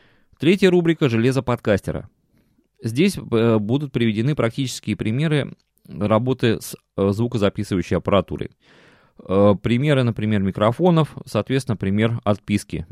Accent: native